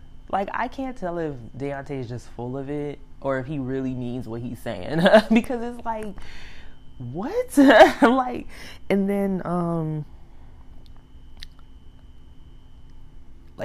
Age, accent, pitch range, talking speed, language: 20-39, American, 110-150 Hz, 120 wpm, English